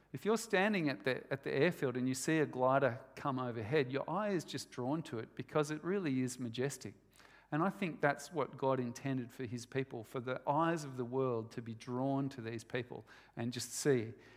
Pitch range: 120-155 Hz